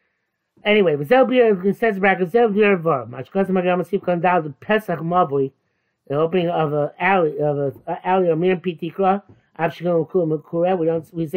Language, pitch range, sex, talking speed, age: English, 155-185 Hz, male, 85 wpm, 60-79